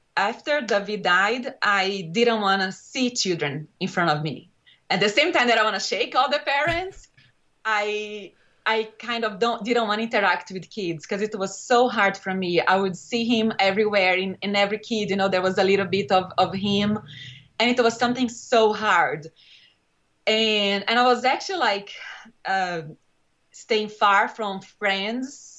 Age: 20-39